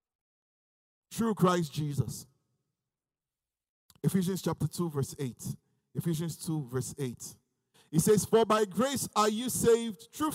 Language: English